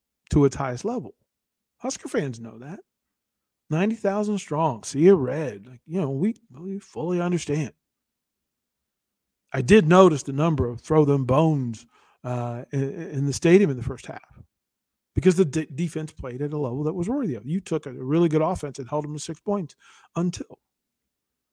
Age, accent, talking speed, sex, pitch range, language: 40-59, American, 165 wpm, male, 140-190 Hz, English